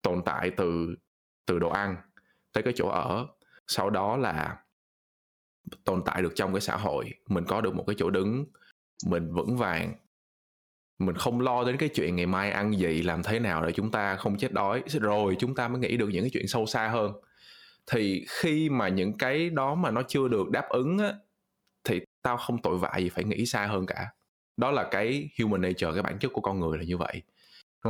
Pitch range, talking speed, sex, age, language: 95-135 Hz, 225 wpm, male, 20-39, English